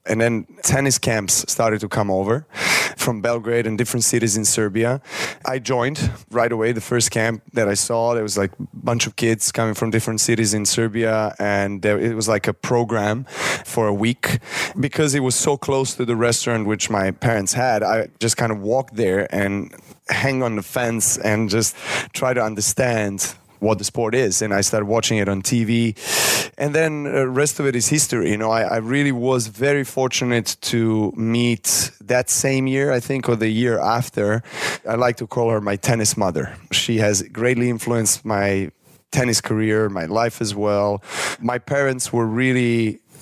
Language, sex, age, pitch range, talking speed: English, male, 20-39, 105-125 Hz, 190 wpm